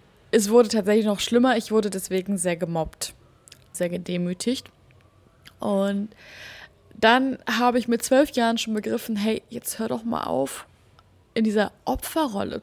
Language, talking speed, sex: German, 145 wpm, female